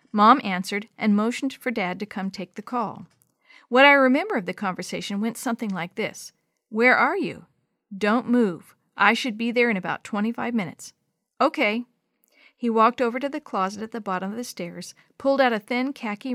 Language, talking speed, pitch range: English, 190 wpm, 195-245 Hz